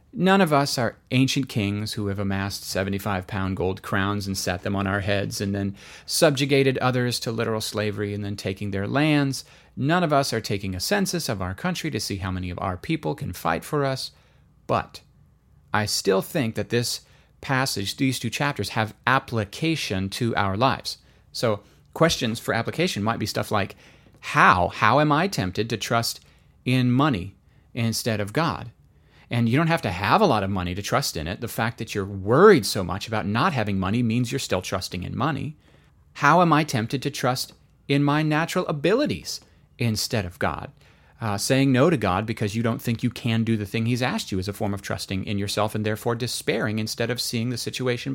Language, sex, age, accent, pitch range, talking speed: English, male, 40-59, American, 100-140 Hz, 200 wpm